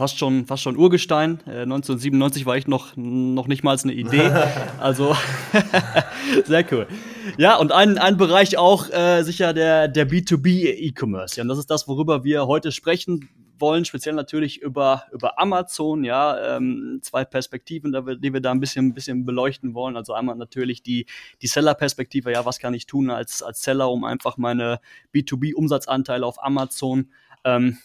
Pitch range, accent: 125-150 Hz, German